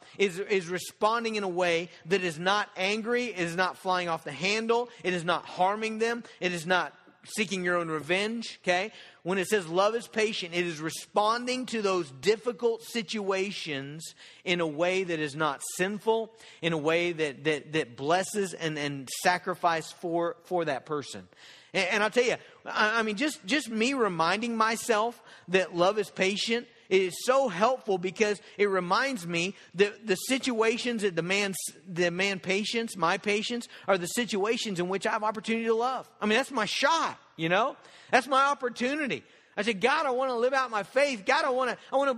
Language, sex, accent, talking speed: English, male, American, 190 wpm